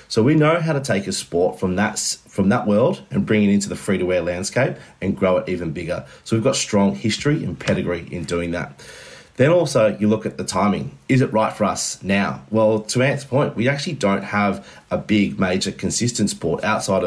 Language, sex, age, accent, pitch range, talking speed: English, male, 30-49, Australian, 90-110 Hz, 225 wpm